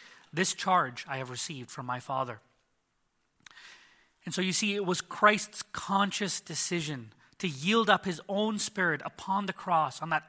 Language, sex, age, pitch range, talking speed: English, male, 30-49, 145-185 Hz, 165 wpm